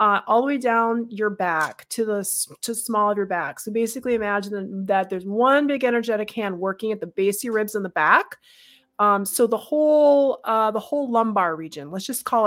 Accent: American